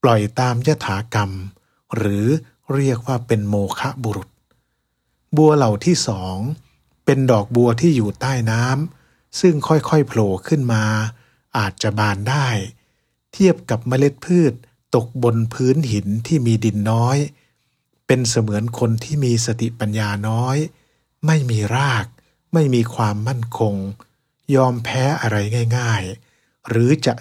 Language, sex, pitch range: English, male, 110-135 Hz